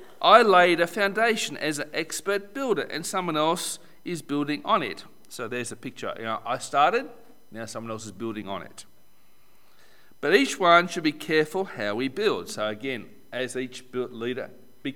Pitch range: 130-195 Hz